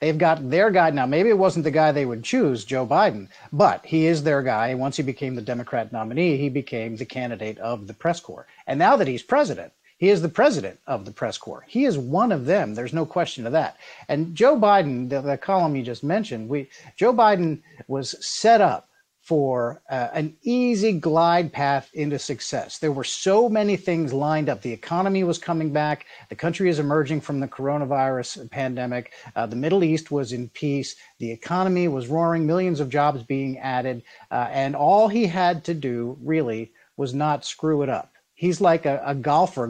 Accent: American